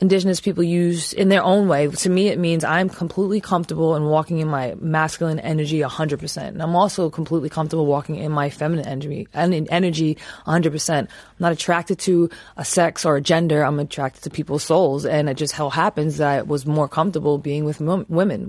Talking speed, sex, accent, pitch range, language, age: 200 wpm, female, American, 150-175 Hz, English, 20-39